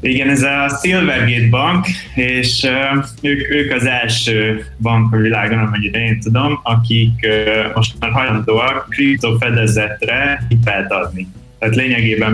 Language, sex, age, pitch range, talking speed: Hungarian, male, 20-39, 105-125 Hz, 130 wpm